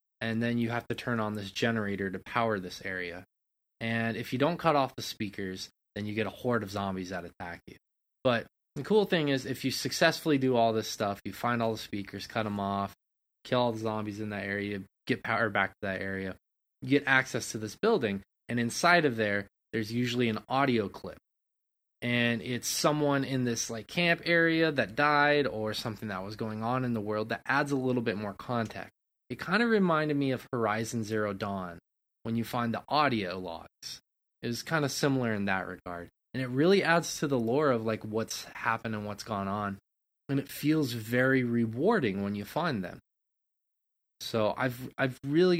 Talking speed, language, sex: 205 wpm, English, male